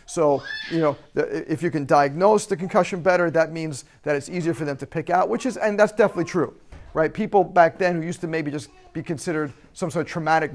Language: English